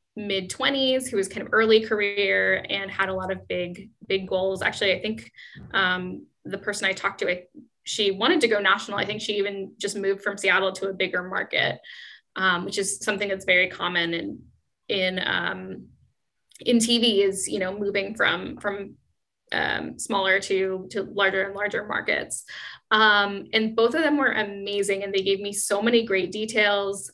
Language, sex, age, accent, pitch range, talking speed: English, female, 10-29, American, 195-235 Hz, 180 wpm